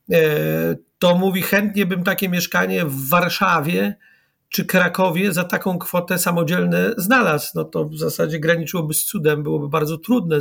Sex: male